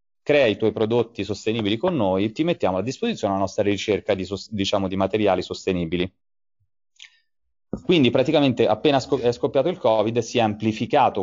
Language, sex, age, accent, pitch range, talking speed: Italian, male, 30-49, native, 100-125 Hz, 155 wpm